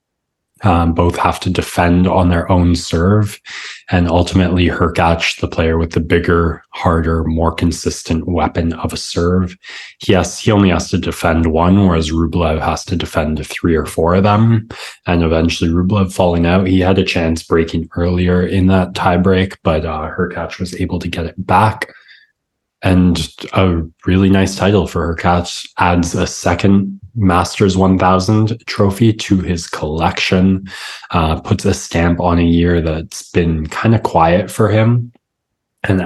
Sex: male